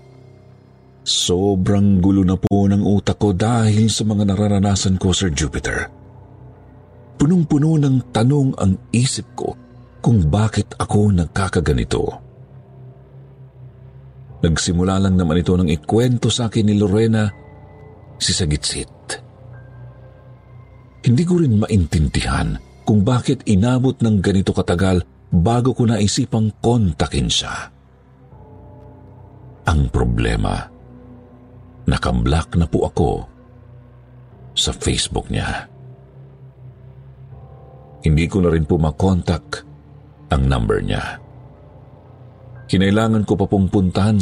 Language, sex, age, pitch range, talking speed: Filipino, male, 50-69, 90-125 Hz, 100 wpm